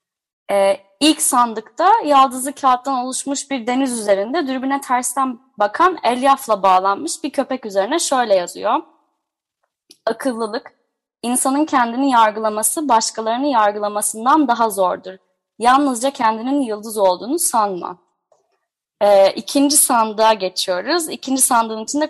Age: 20-39